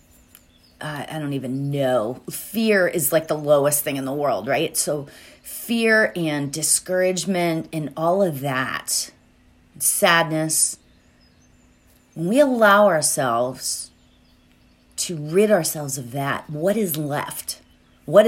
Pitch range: 125-200 Hz